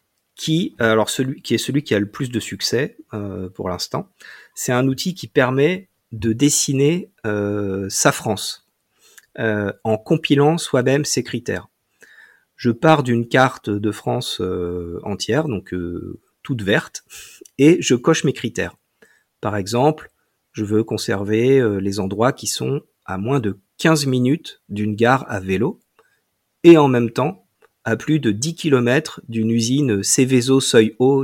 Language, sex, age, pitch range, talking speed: French, male, 40-59, 110-150 Hz, 150 wpm